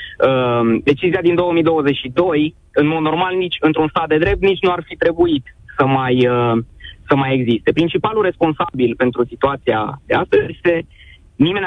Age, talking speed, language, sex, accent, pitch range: 20-39, 150 wpm, Romanian, male, native, 130-175 Hz